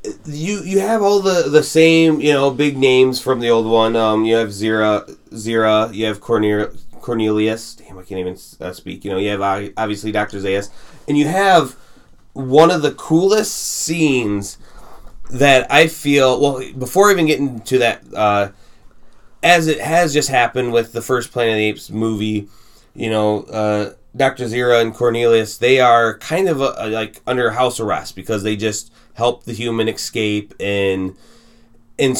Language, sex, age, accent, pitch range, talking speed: English, male, 20-39, American, 105-135 Hz, 175 wpm